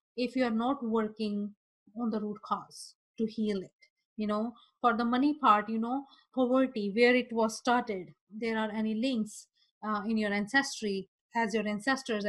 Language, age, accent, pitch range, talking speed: English, 30-49, Indian, 210-255 Hz, 175 wpm